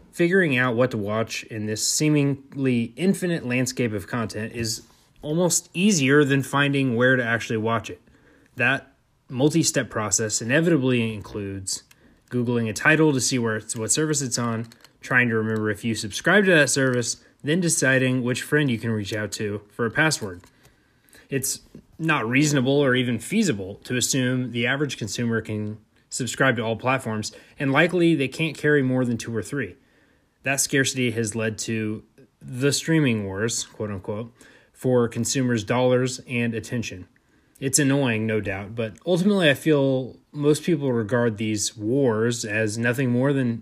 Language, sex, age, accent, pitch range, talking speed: English, male, 20-39, American, 110-145 Hz, 160 wpm